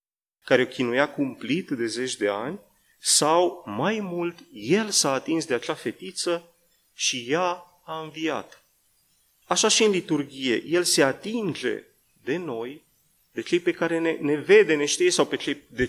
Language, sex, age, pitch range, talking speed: Romanian, male, 30-49, 130-180 Hz, 160 wpm